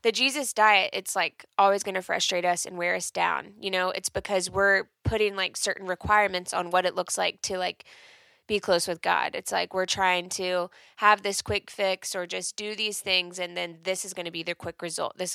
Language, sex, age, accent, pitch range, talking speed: English, female, 20-39, American, 175-205 Hz, 235 wpm